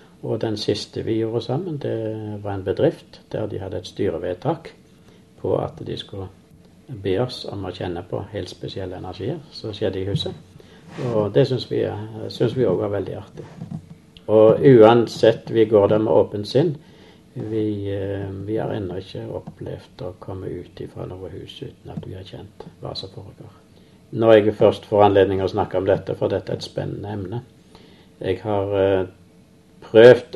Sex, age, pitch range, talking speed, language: male, 60-79, 95-115 Hz, 175 wpm, English